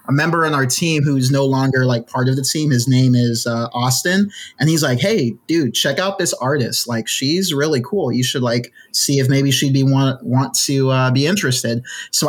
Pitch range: 125-145 Hz